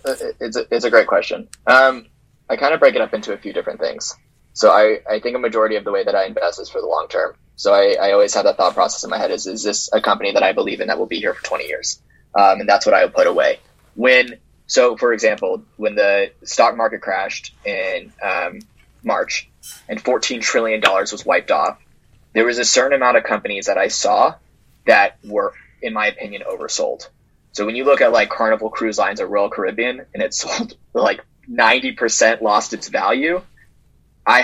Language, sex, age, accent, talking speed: English, male, 20-39, American, 215 wpm